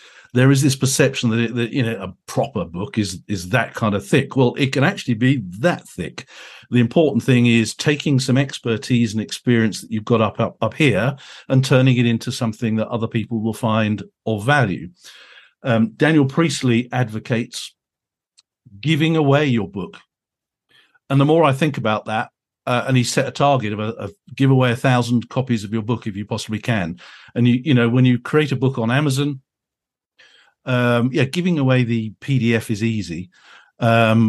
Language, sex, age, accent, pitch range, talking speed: English, male, 50-69, British, 110-135 Hz, 190 wpm